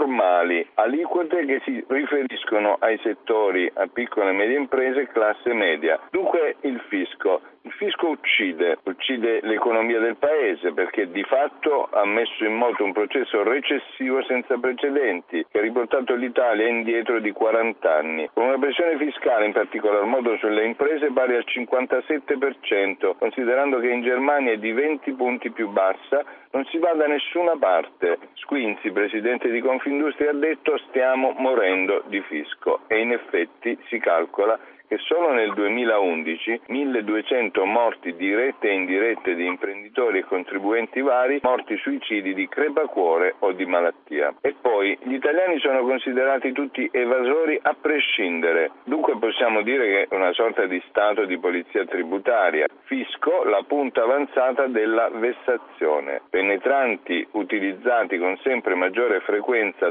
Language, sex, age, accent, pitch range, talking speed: Italian, male, 50-69, native, 110-145 Hz, 140 wpm